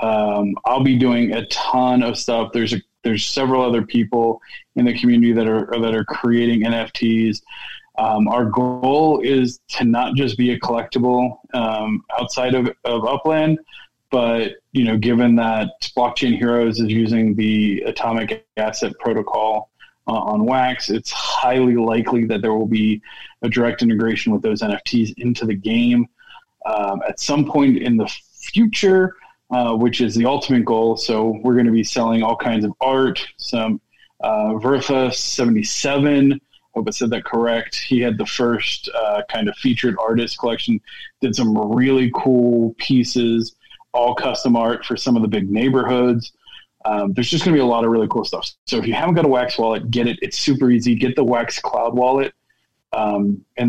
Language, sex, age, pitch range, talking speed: English, male, 20-39, 115-130 Hz, 180 wpm